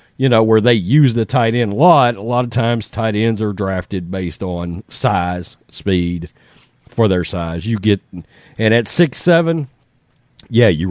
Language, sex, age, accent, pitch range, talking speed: English, male, 40-59, American, 105-145 Hz, 175 wpm